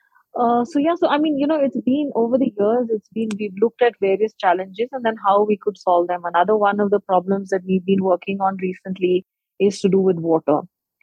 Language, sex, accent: English, female, Indian